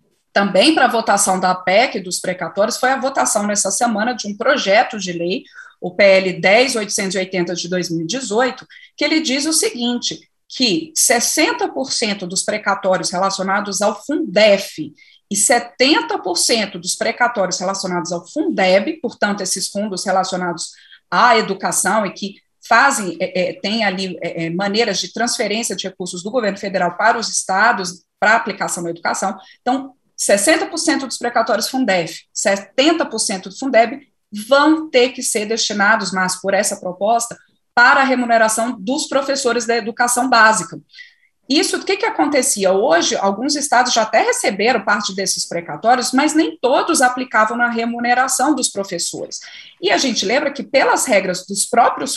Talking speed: 145 wpm